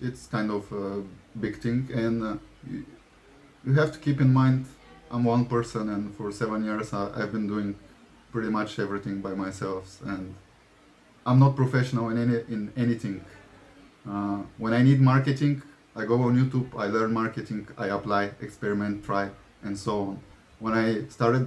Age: 20-39